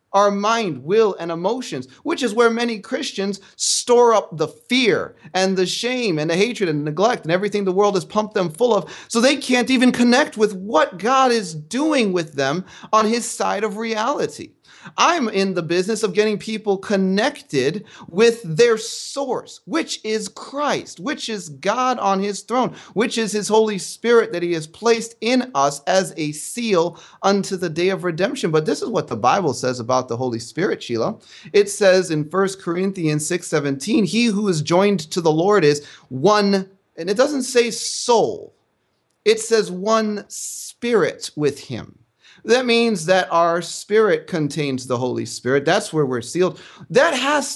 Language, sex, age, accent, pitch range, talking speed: English, male, 30-49, American, 180-235 Hz, 180 wpm